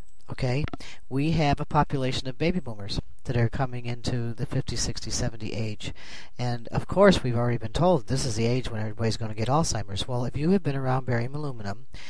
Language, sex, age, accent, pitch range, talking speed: English, male, 40-59, American, 120-150 Hz, 205 wpm